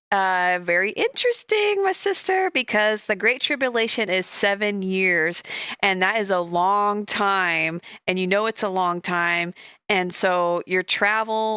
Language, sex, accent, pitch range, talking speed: English, female, American, 175-215 Hz, 150 wpm